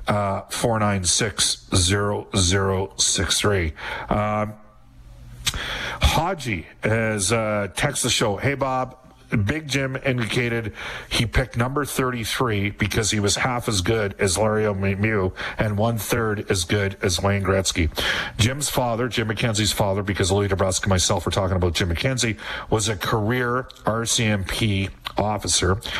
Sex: male